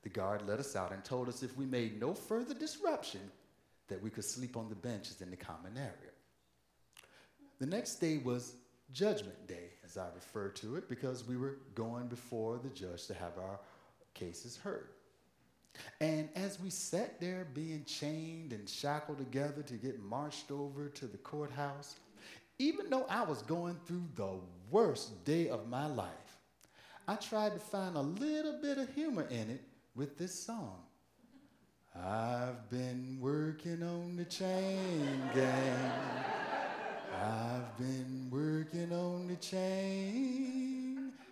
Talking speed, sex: 150 wpm, male